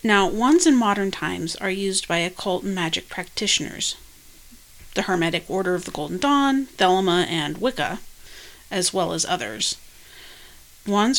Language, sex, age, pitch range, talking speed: English, female, 40-59, 180-235 Hz, 145 wpm